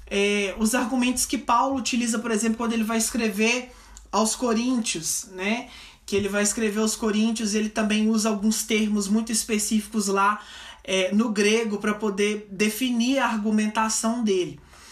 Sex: male